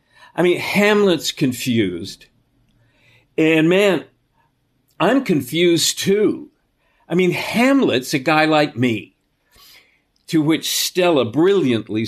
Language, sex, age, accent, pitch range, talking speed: English, male, 50-69, American, 130-180 Hz, 100 wpm